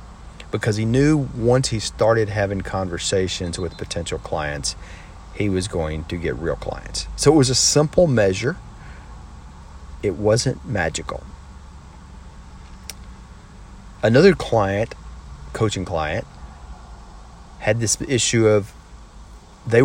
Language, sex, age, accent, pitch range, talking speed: English, male, 40-59, American, 75-120 Hz, 110 wpm